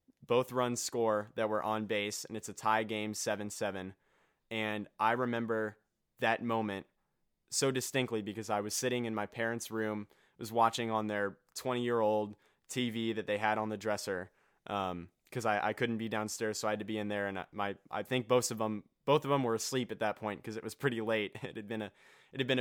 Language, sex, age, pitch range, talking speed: English, male, 20-39, 105-115 Hz, 220 wpm